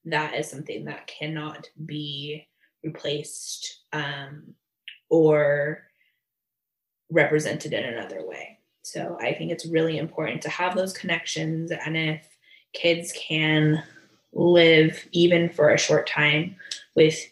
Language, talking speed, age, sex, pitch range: English, 120 wpm, 20-39, female, 150-170 Hz